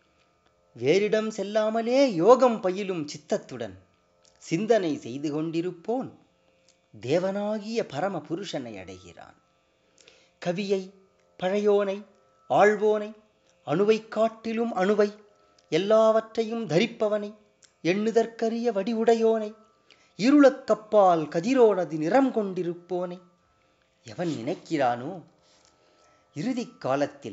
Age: 30-49